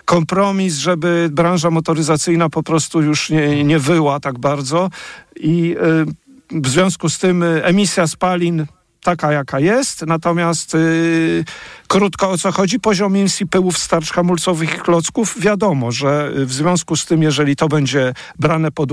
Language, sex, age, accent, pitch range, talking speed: Polish, male, 50-69, native, 145-175 Hz, 145 wpm